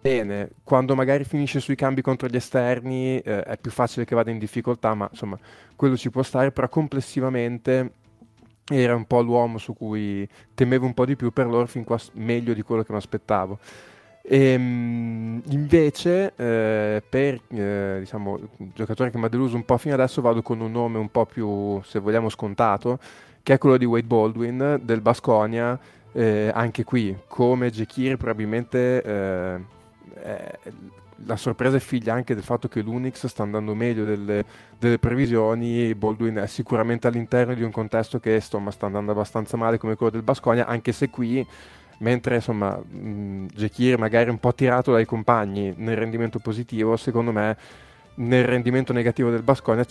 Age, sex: 20-39, male